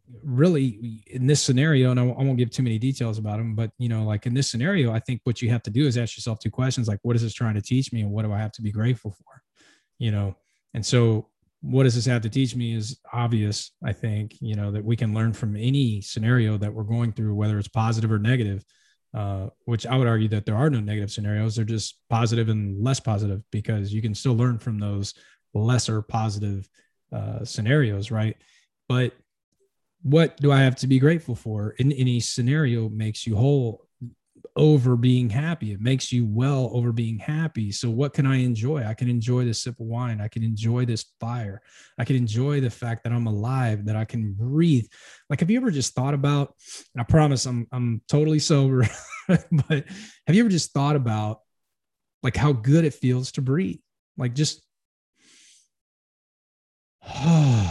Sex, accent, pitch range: male, American, 110-135 Hz